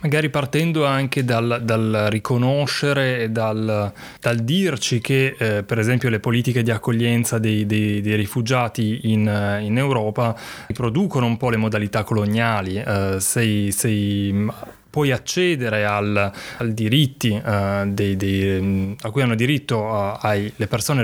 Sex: male